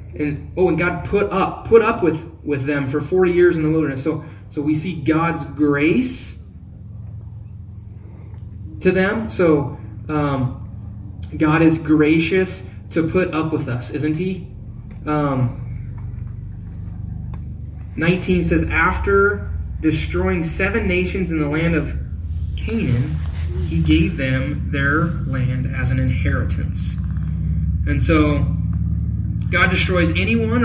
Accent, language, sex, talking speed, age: American, English, male, 120 wpm, 20-39